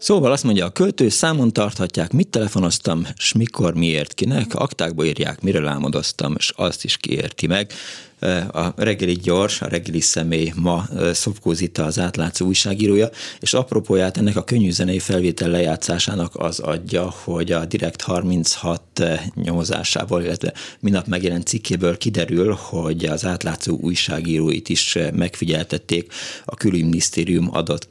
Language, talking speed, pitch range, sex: Hungarian, 135 wpm, 85-100 Hz, male